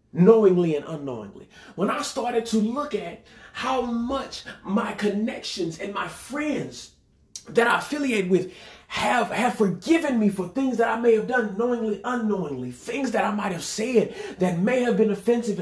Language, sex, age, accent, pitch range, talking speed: English, male, 30-49, American, 195-265 Hz, 170 wpm